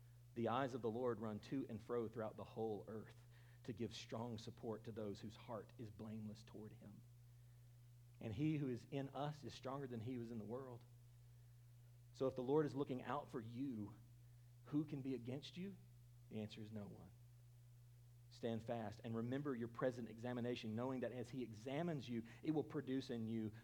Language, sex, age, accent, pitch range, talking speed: English, male, 40-59, American, 120-130 Hz, 195 wpm